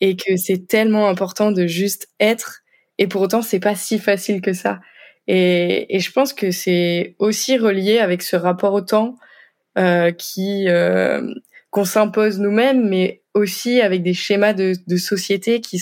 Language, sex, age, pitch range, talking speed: French, female, 20-39, 185-225 Hz, 170 wpm